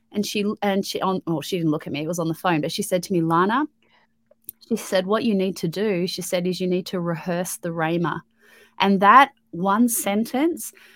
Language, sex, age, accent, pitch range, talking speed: English, female, 30-49, Australian, 175-210 Hz, 230 wpm